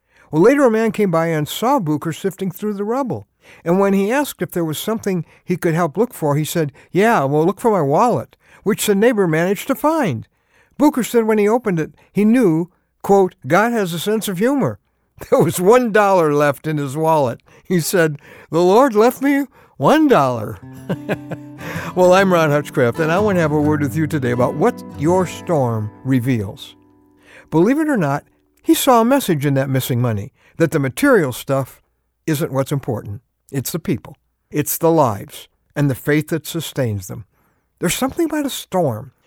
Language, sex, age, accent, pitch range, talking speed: English, male, 60-79, American, 135-190 Hz, 195 wpm